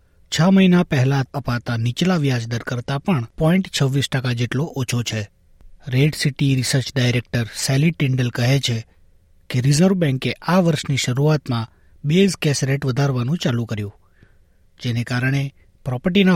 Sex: male